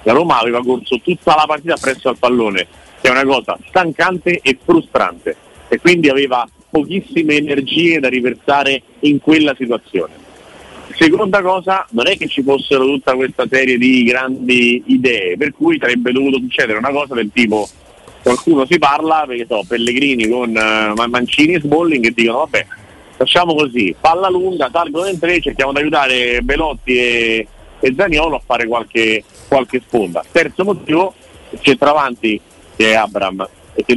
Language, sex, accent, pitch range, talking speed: Italian, male, native, 120-145 Hz, 160 wpm